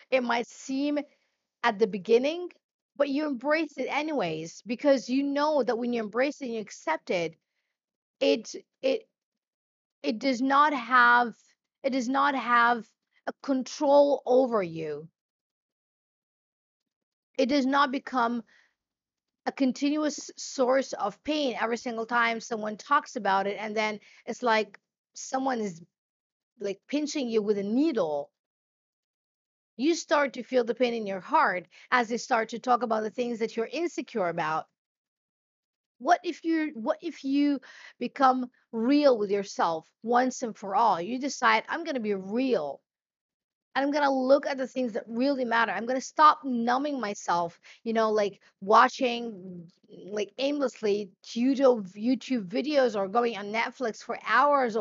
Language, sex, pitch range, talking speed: English, female, 220-275 Hz, 145 wpm